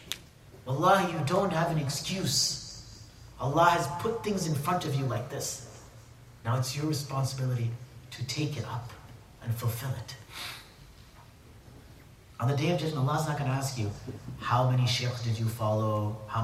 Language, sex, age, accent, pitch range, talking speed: English, male, 30-49, American, 115-145 Hz, 170 wpm